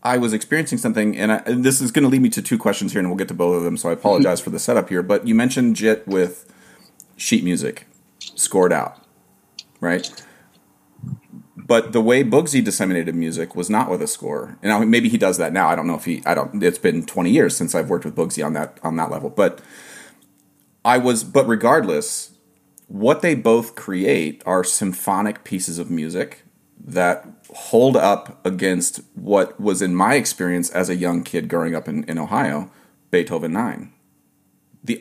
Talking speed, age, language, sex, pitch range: 195 wpm, 30-49, English, male, 95-130 Hz